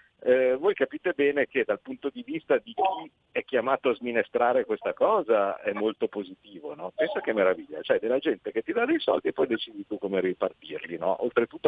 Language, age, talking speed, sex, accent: Italian, 50-69, 205 wpm, male, native